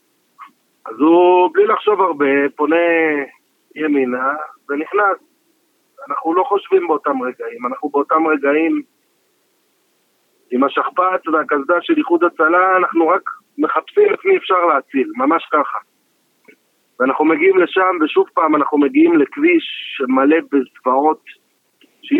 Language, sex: Hebrew, male